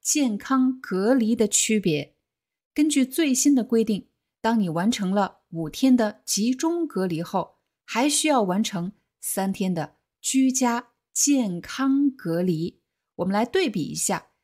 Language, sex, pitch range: Chinese, female, 190-265 Hz